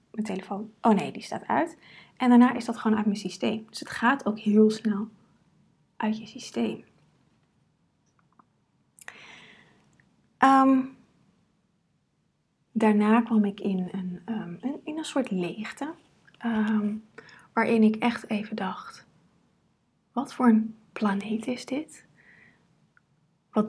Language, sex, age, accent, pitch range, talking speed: Dutch, female, 20-39, Dutch, 195-230 Hz, 110 wpm